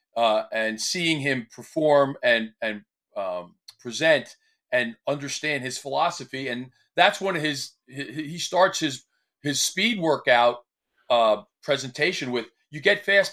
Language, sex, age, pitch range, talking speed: English, male, 40-59, 135-180 Hz, 140 wpm